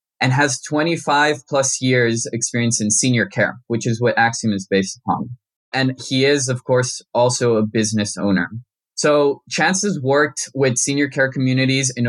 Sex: male